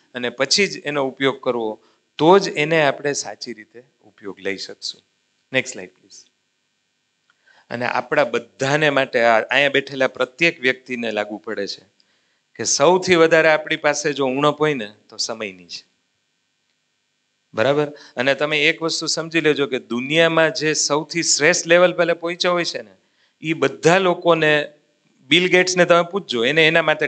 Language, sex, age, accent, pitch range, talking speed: Gujarati, male, 40-59, native, 120-160 Hz, 150 wpm